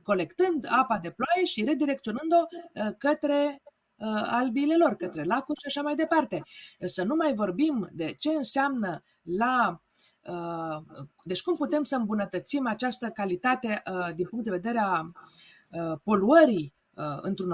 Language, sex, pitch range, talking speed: Romanian, female, 185-280 Hz, 125 wpm